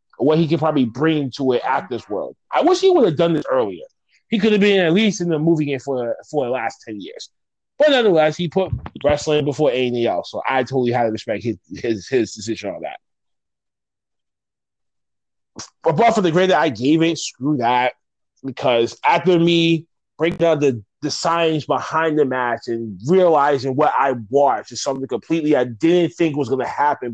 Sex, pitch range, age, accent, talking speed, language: male, 135-185 Hz, 30-49, American, 200 wpm, English